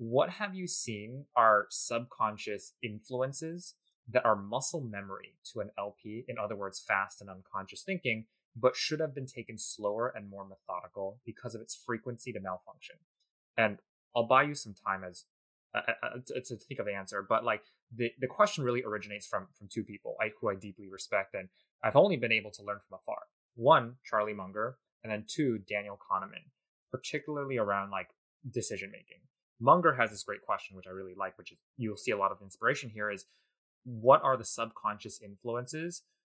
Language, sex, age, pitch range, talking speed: English, male, 20-39, 100-130 Hz, 185 wpm